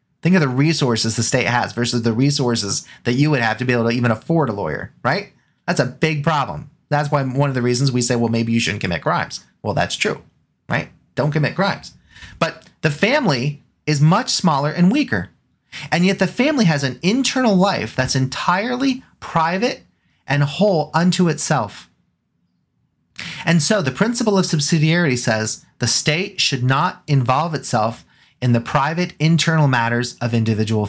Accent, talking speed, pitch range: American, 175 wpm, 120-165 Hz